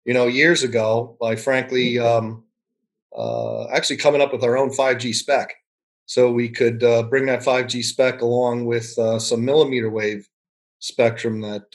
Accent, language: American, English